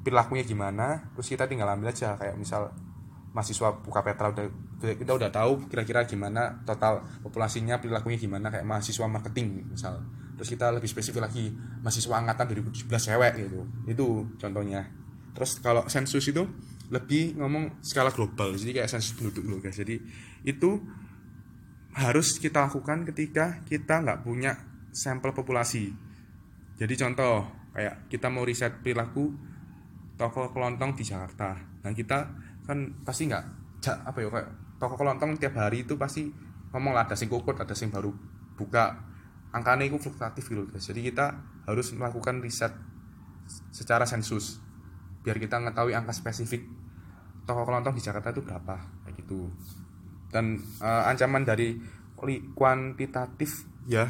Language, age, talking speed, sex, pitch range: Indonesian, 20-39, 140 wpm, male, 105-130 Hz